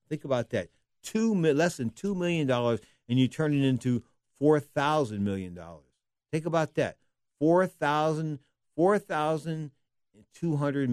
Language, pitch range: English, 115-160 Hz